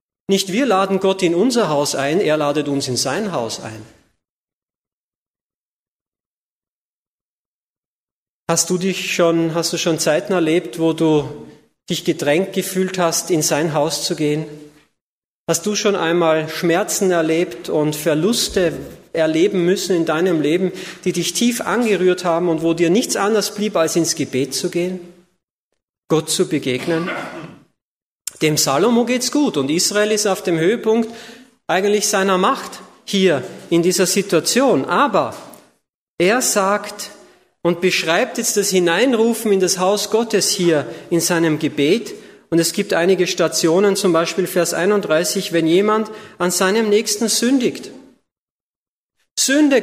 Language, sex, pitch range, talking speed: German, male, 165-210 Hz, 140 wpm